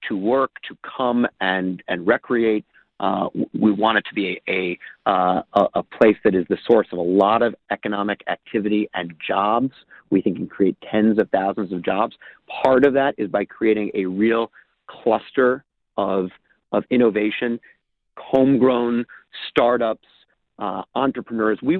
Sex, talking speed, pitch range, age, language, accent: male, 155 wpm, 105-125 Hz, 40-59, English, American